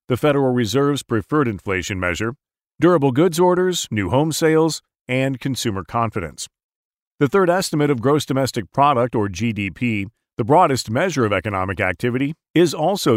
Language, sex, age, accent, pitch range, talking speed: English, male, 40-59, American, 110-155 Hz, 145 wpm